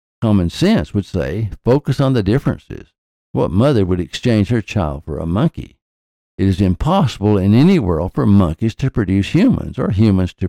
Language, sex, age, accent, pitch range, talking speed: English, male, 60-79, American, 90-125 Hz, 175 wpm